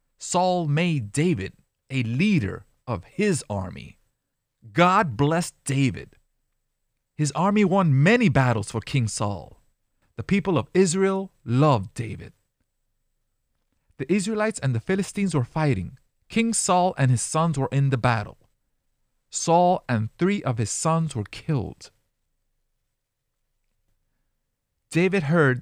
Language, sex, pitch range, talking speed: English, male, 110-150 Hz, 120 wpm